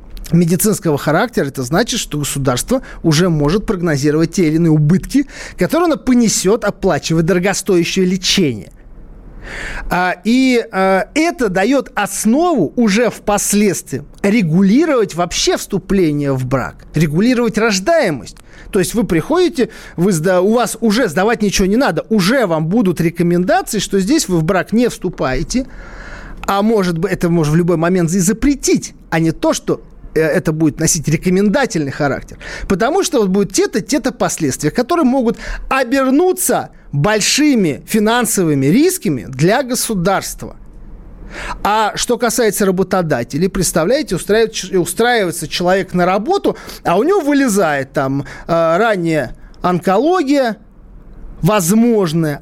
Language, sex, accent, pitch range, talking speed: Russian, male, native, 165-235 Hz, 120 wpm